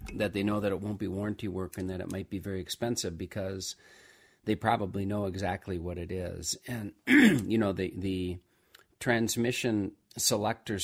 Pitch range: 90-100 Hz